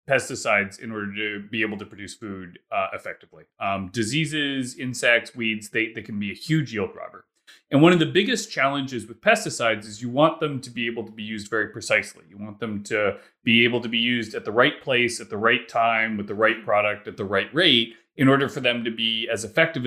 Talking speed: 230 wpm